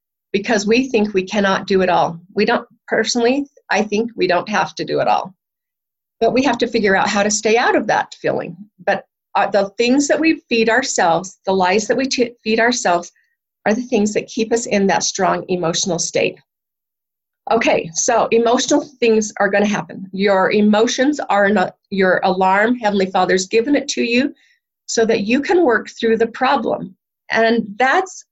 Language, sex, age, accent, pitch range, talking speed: English, female, 40-59, American, 195-255 Hz, 190 wpm